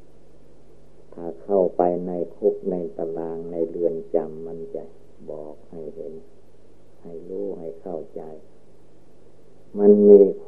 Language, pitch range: Thai, 85-100 Hz